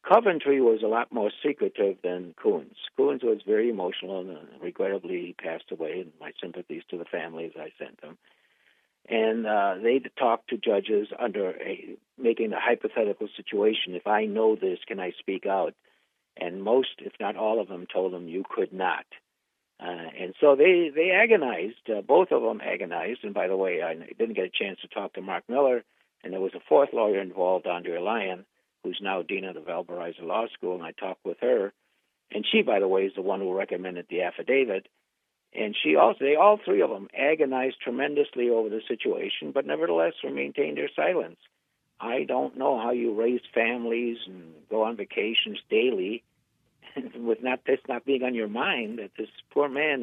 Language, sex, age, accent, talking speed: English, male, 60-79, American, 190 wpm